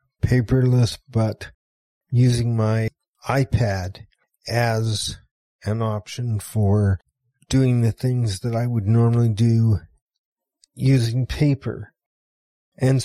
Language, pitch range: English, 105-125 Hz